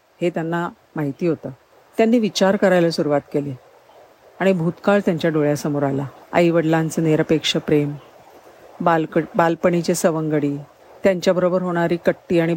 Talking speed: 85 wpm